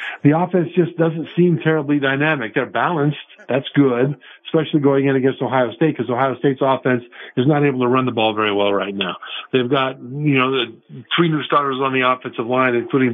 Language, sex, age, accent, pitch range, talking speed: English, male, 50-69, American, 120-145 Hz, 205 wpm